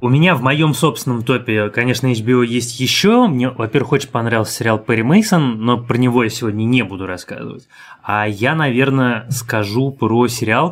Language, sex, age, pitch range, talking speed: Russian, male, 20-39, 115-145 Hz, 175 wpm